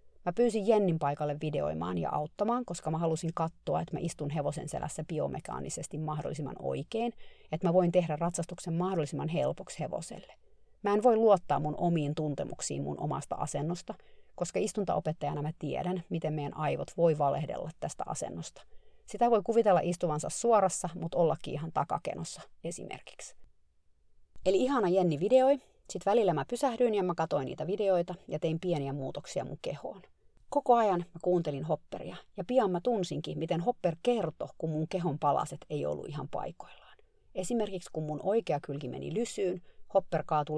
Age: 30-49